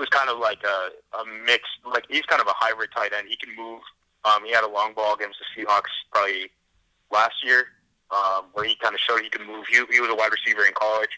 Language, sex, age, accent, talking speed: English, male, 30-49, American, 240 wpm